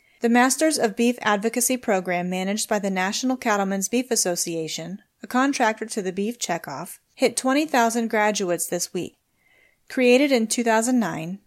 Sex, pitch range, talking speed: female, 190-240 Hz, 140 wpm